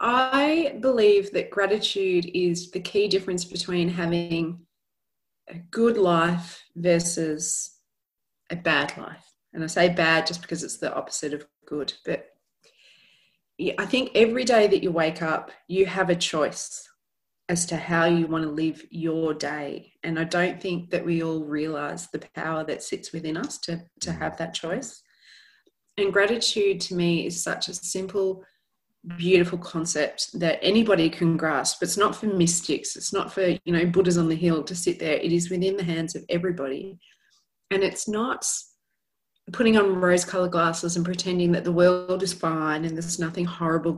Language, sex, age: English, female, 30-49